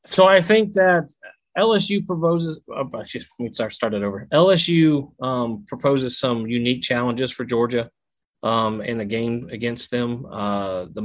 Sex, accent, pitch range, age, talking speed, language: male, American, 105-120 Hz, 30-49, 160 wpm, English